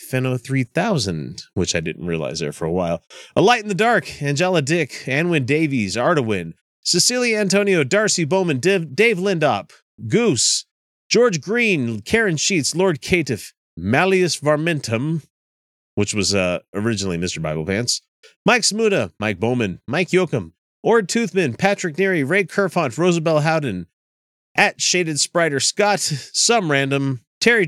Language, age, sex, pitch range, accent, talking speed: English, 30-49, male, 120-185 Hz, American, 135 wpm